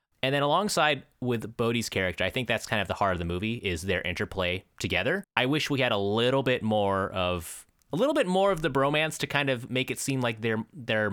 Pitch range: 100-145 Hz